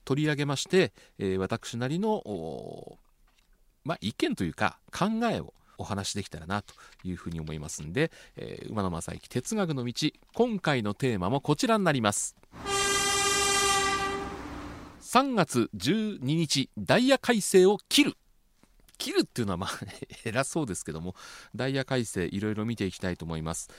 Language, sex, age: Japanese, male, 40-59